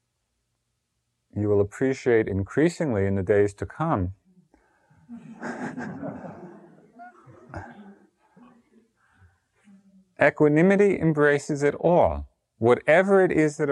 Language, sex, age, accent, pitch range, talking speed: English, male, 40-59, American, 100-140 Hz, 75 wpm